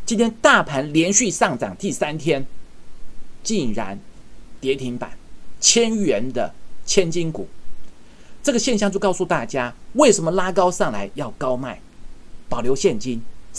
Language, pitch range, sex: Chinese, 135-210 Hz, male